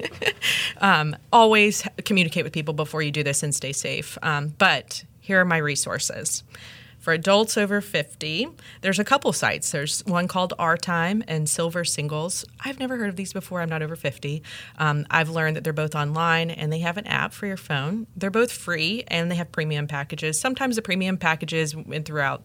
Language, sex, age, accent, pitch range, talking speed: English, female, 30-49, American, 145-170 Hz, 195 wpm